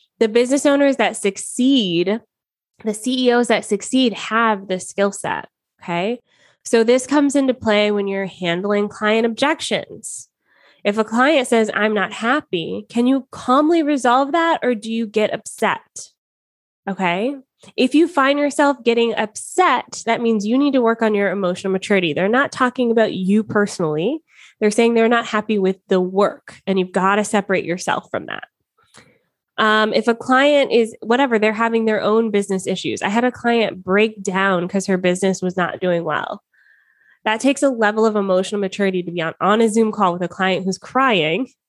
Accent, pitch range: American, 190-240 Hz